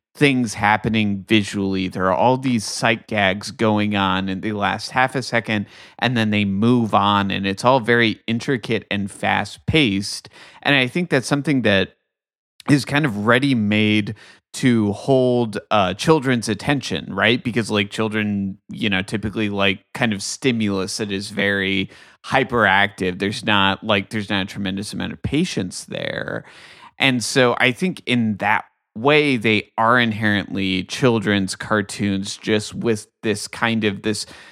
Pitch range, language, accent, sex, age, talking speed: 100-120 Hz, English, American, male, 30-49, 155 wpm